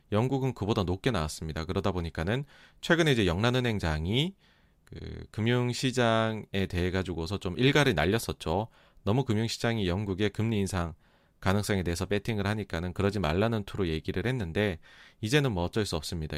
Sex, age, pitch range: male, 40-59, 85-120 Hz